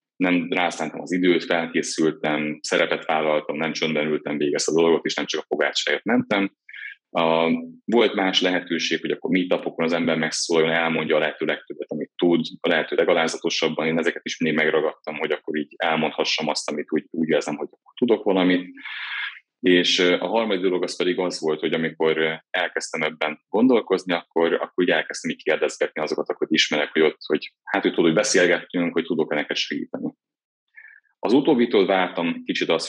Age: 30-49